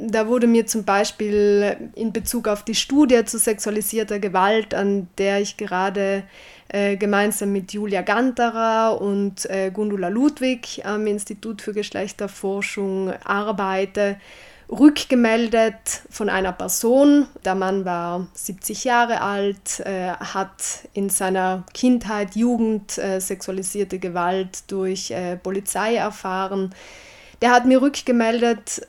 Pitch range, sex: 200-230 Hz, female